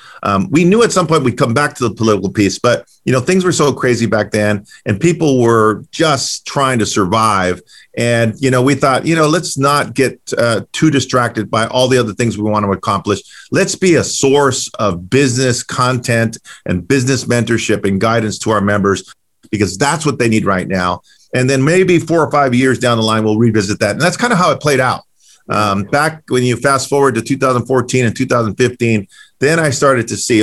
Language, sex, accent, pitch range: English, male, American, 105-130 Hz